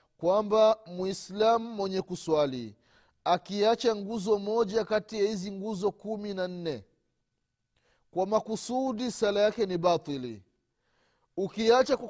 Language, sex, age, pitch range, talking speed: Swahili, male, 30-49, 165-225 Hz, 100 wpm